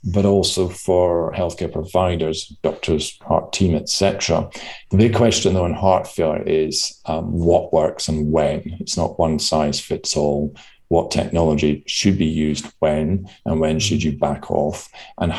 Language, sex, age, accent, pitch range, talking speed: English, male, 40-59, British, 80-95 Hz, 165 wpm